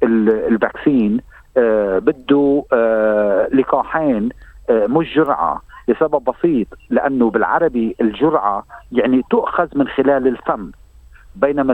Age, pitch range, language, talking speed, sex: 50-69, 125-160 Hz, Arabic, 95 wpm, male